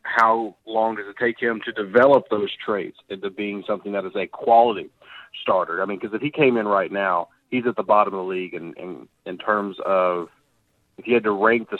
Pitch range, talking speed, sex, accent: 100-120 Hz, 230 wpm, male, American